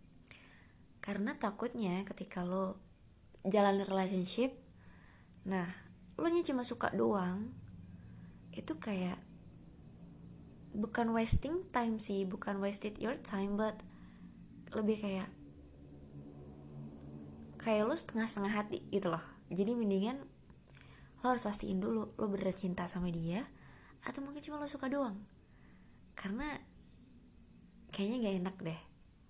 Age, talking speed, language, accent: 20-39, 110 wpm, Indonesian, native